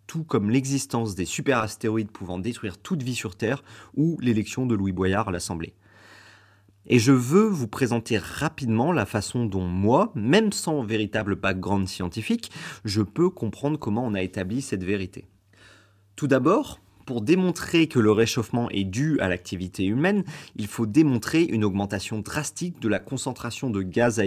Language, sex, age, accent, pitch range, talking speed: French, male, 30-49, French, 100-135 Hz, 165 wpm